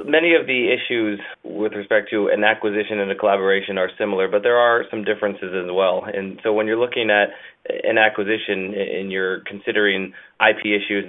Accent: American